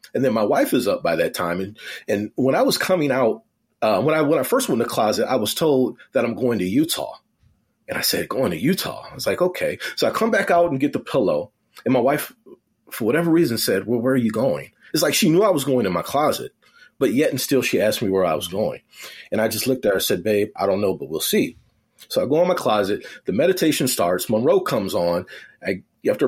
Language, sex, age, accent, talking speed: English, male, 30-49, American, 260 wpm